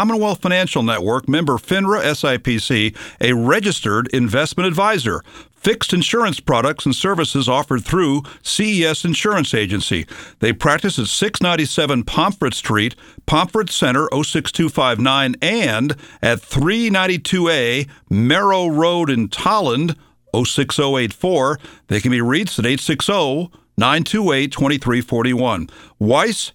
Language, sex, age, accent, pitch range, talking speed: English, male, 50-69, American, 120-170 Hz, 100 wpm